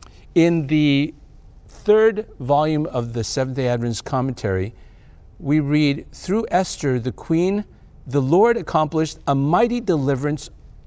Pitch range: 120-170 Hz